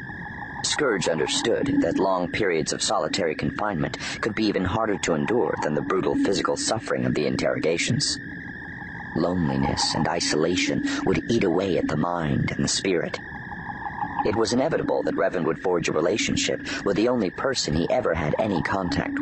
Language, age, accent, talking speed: English, 40-59, American, 160 wpm